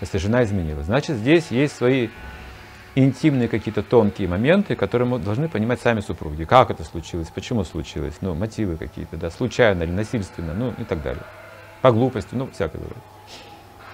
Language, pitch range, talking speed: Russian, 95-125 Hz, 165 wpm